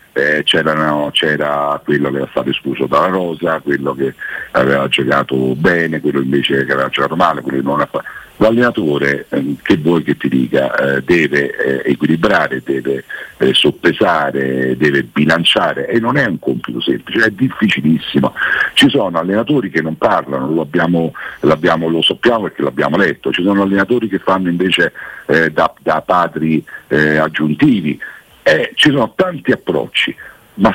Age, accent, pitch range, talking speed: 50-69, native, 75-115 Hz, 160 wpm